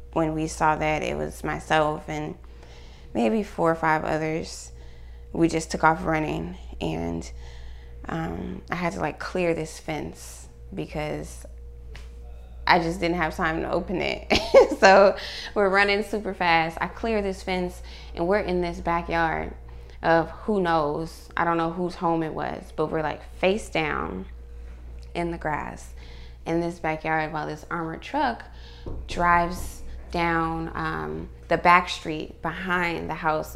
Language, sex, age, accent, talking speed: English, female, 20-39, American, 150 wpm